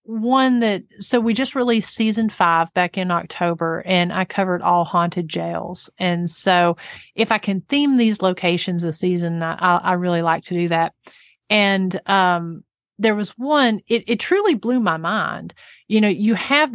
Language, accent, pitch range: English, American, 170-205 Hz